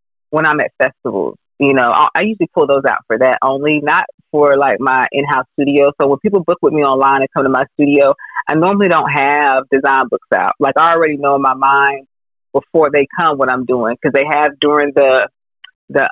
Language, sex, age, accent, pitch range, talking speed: English, female, 30-49, American, 140-165 Hz, 215 wpm